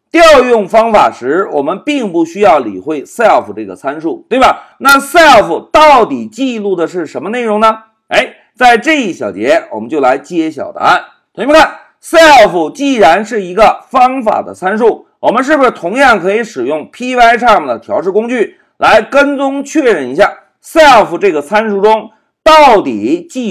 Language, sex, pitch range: Chinese, male, 220-310 Hz